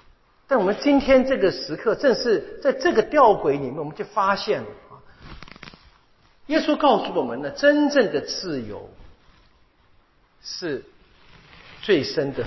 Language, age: Chinese, 50-69